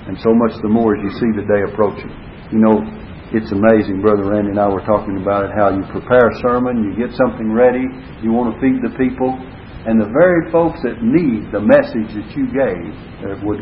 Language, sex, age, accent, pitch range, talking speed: English, male, 60-79, American, 110-160 Hz, 225 wpm